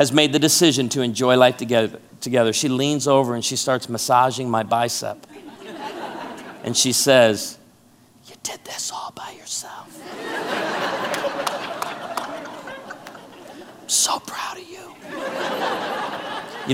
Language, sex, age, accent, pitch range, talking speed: English, male, 40-59, American, 120-165 Hz, 115 wpm